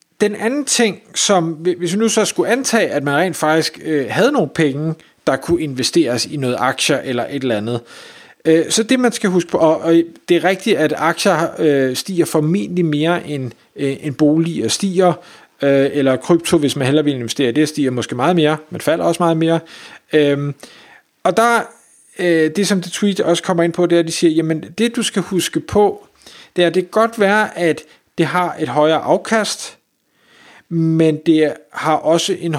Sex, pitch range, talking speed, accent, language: male, 145-180 Hz, 205 wpm, native, Danish